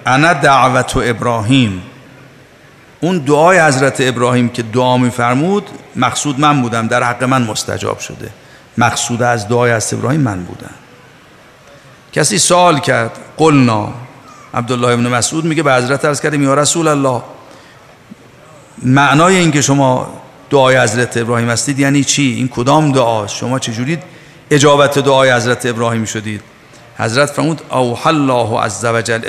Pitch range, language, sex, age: 120-145 Hz, Persian, male, 50-69